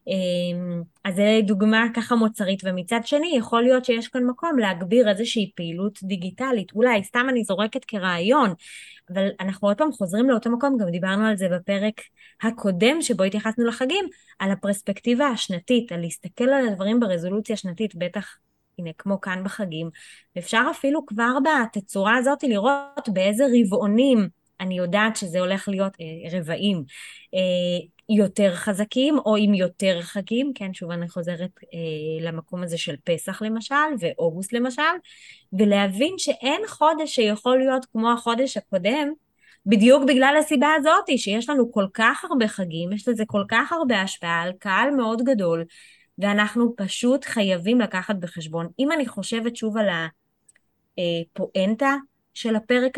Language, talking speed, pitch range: Hebrew, 140 wpm, 190-250 Hz